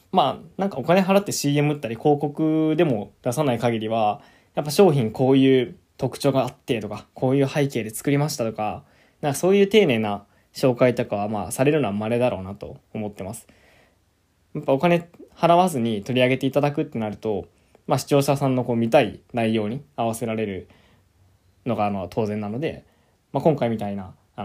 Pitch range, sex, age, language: 105-140 Hz, male, 20-39, Japanese